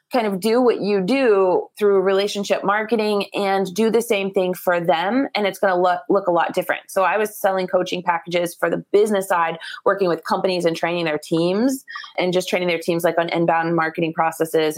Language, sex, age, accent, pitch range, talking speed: English, female, 20-39, American, 170-195 Hz, 210 wpm